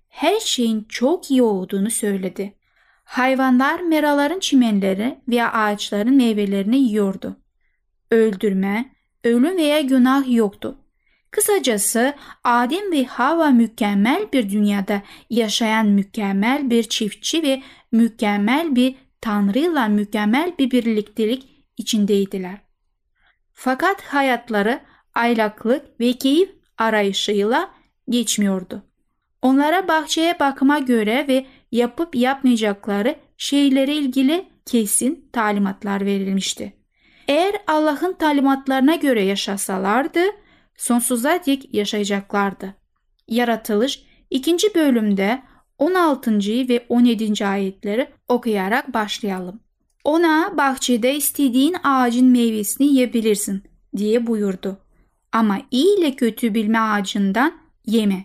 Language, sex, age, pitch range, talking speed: Turkish, female, 10-29, 210-280 Hz, 90 wpm